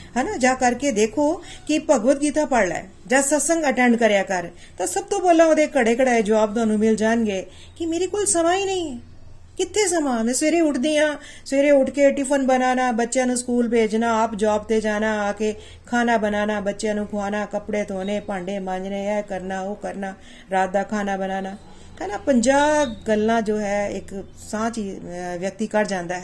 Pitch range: 200-265 Hz